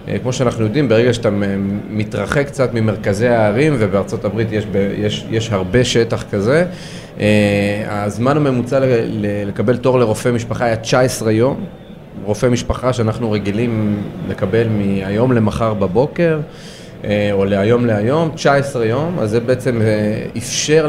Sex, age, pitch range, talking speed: male, 30-49, 105-135 Hz, 130 wpm